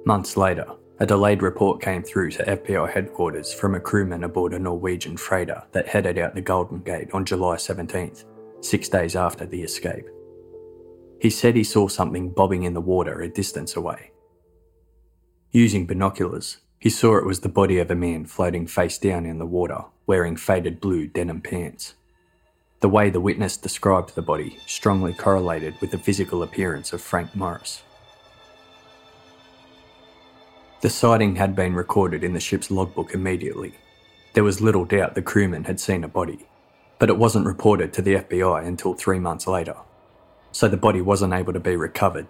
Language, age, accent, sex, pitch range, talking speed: English, 20-39, Australian, male, 90-105 Hz, 170 wpm